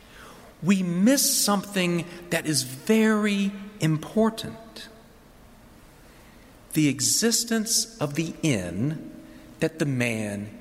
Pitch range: 200-260 Hz